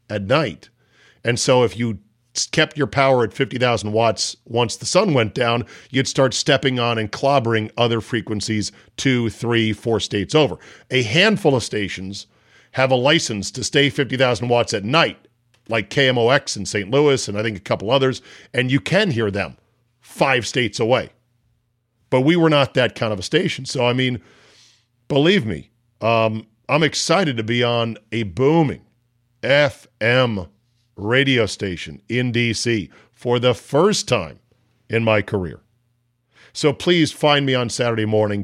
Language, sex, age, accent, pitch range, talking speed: English, male, 50-69, American, 110-140 Hz, 160 wpm